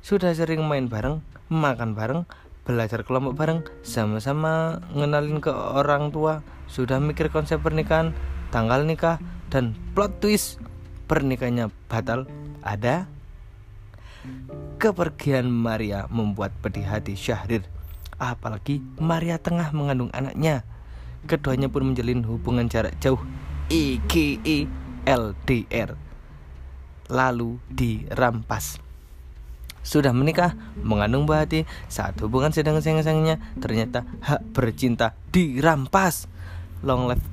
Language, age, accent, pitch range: Indonesian, 20-39, native, 105-150 Hz